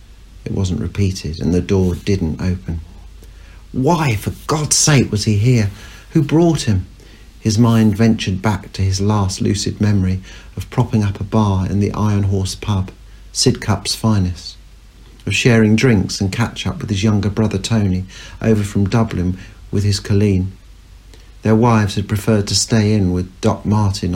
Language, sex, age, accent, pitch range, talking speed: English, male, 50-69, British, 95-110 Hz, 165 wpm